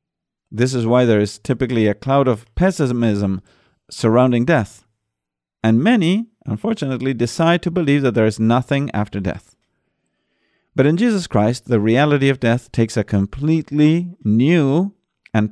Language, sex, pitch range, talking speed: English, male, 115-165 Hz, 145 wpm